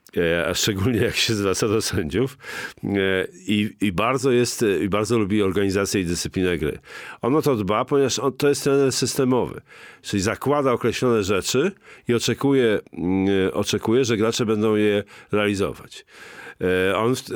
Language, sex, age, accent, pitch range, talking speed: Polish, male, 40-59, native, 105-130 Hz, 140 wpm